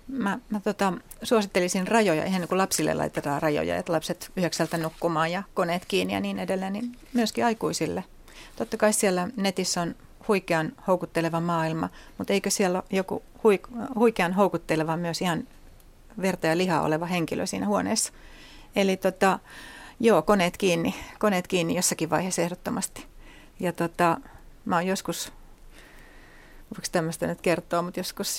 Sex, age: female, 40-59